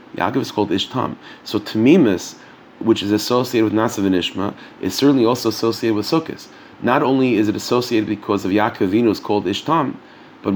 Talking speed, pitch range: 170 wpm, 100-120 Hz